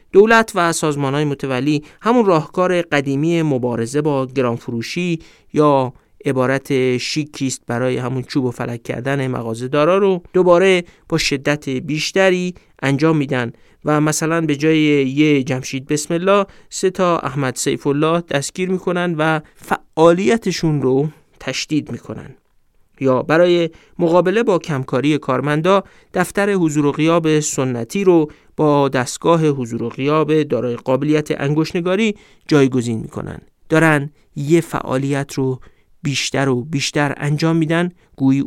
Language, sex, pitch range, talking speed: Persian, male, 130-165 Hz, 125 wpm